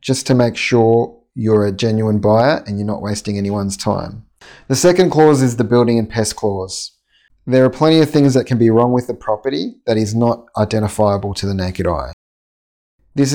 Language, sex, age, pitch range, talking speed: English, male, 30-49, 105-130 Hz, 200 wpm